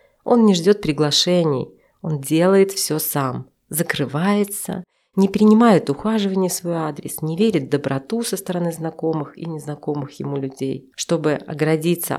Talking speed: 140 wpm